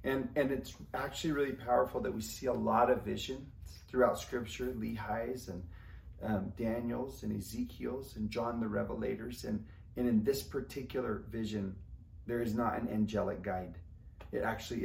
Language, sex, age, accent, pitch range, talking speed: English, male, 30-49, American, 95-120 Hz, 160 wpm